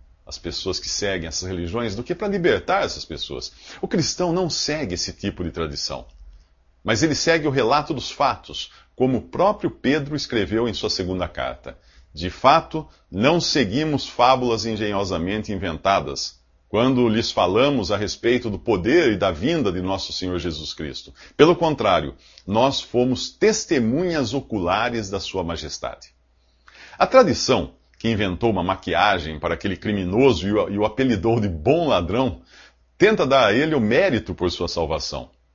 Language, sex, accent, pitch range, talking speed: English, male, Brazilian, 85-130 Hz, 150 wpm